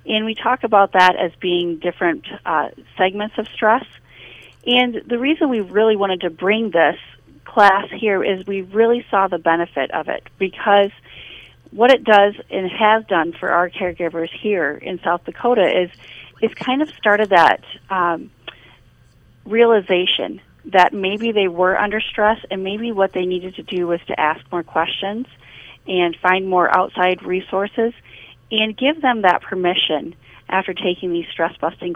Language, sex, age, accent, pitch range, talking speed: English, female, 40-59, American, 175-215 Hz, 160 wpm